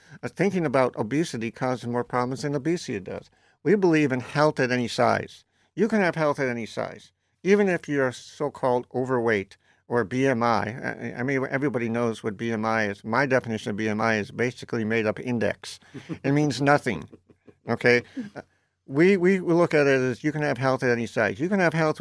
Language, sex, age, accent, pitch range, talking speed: English, male, 50-69, American, 115-150 Hz, 185 wpm